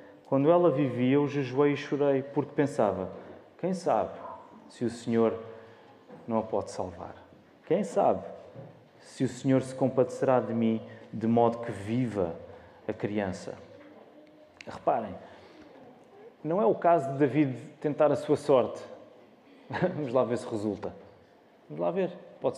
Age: 30-49